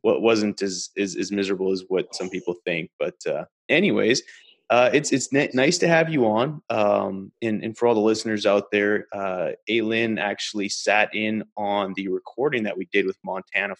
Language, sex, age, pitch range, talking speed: English, male, 20-39, 100-120 Hz, 200 wpm